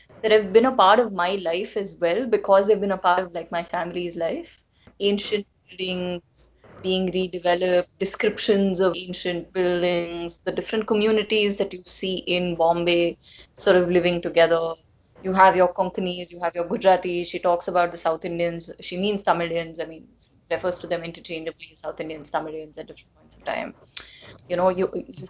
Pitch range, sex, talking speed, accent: 175-215 Hz, female, 180 wpm, Indian